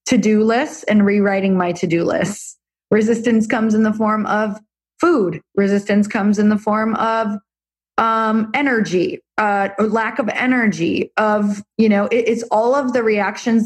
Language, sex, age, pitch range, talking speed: English, female, 20-39, 190-220 Hz, 160 wpm